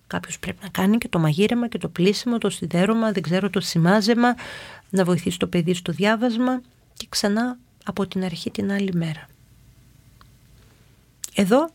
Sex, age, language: female, 40-59, Greek